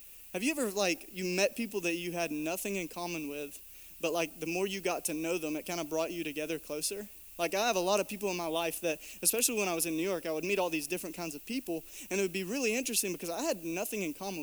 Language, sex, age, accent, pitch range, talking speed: English, male, 20-39, American, 165-200 Hz, 285 wpm